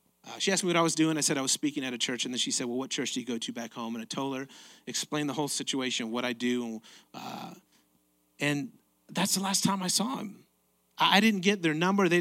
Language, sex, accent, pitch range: English, male, American, 115-160 Hz